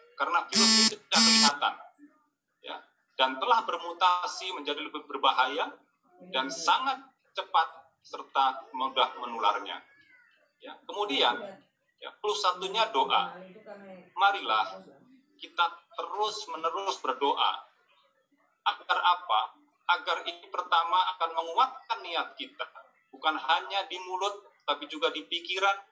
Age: 40-59